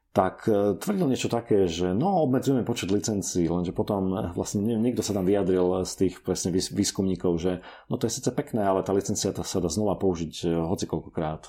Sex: male